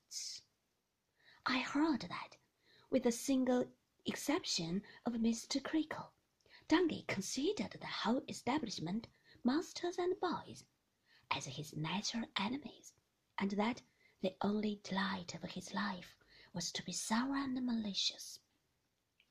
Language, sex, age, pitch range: Chinese, female, 30-49, 195-300 Hz